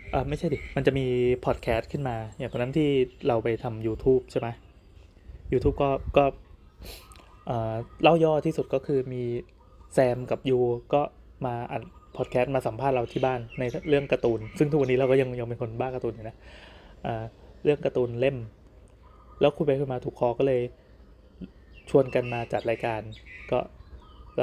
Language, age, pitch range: Thai, 20-39, 115-140 Hz